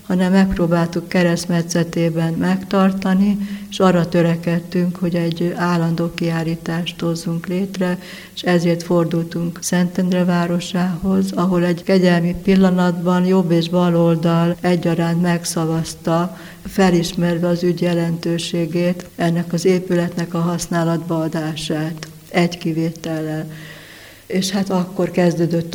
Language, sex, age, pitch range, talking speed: Hungarian, female, 60-79, 170-180 Hz, 100 wpm